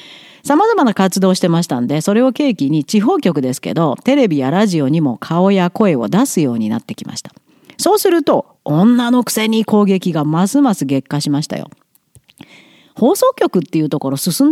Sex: female